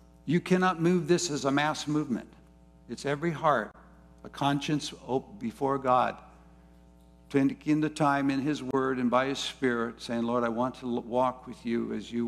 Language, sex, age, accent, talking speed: English, male, 60-79, American, 175 wpm